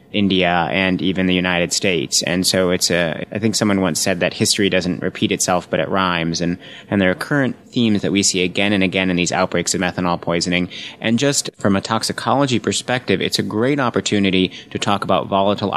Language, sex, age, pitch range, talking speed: English, male, 30-49, 90-100 Hz, 210 wpm